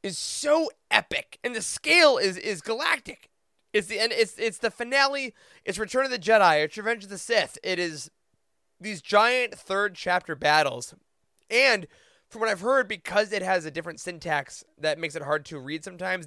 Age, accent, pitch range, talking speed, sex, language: 20-39, American, 155-200 Hz, 185 wpm, male, English